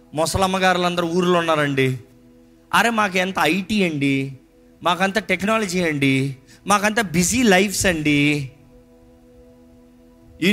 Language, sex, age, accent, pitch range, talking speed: Telugu, male, 30-49, native, 130-200 Hz, 95 wpm